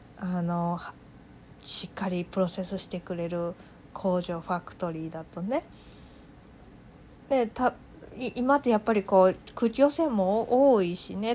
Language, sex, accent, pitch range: Japanese, female, native, 185-235 Hz